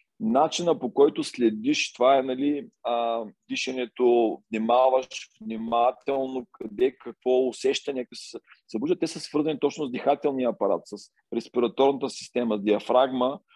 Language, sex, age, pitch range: Bulgarian, male, 40-59, 125-160 Hz